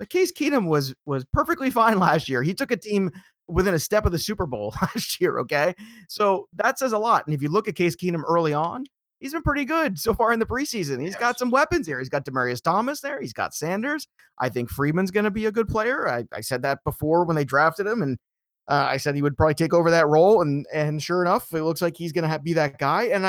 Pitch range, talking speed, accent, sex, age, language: 140-200 Hz, 260 wpm, American, male, 30-49, English